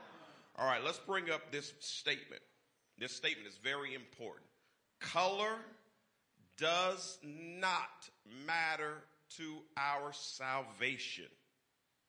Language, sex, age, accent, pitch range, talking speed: English, male, 40-59, American, 135-185 Hz, 95 wpm